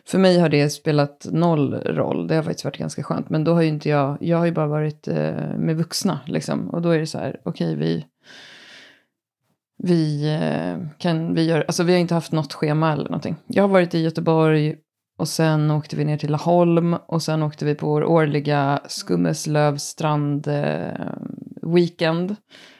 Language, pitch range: Swedish, 150-180 Hz